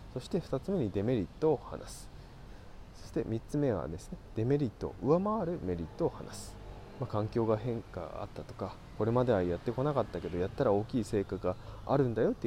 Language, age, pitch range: Japanese, 20-39, 100-130 Hz